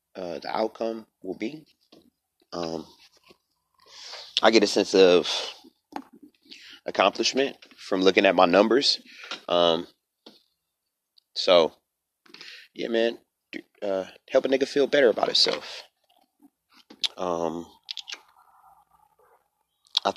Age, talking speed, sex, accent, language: 30-49, 90 wpm, male, American, English